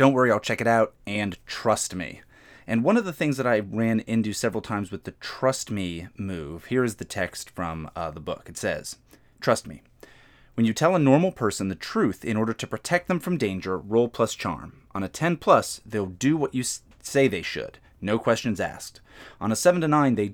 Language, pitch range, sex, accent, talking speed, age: English, 95-130 Hz, male, American, 220 wpm, 30-49